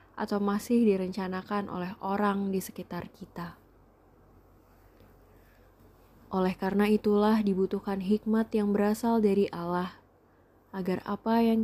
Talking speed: 105 wpm